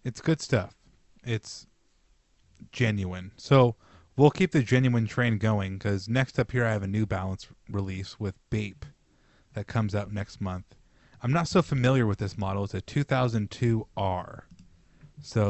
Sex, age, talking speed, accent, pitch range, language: male, 30-49, 160 wpm, American, 100-120 Hz, English